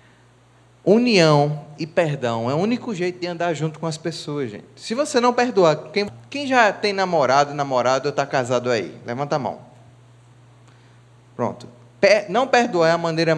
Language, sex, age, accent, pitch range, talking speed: English, male, 20-39, Brazilian, 120-175 Hz, 165 wpm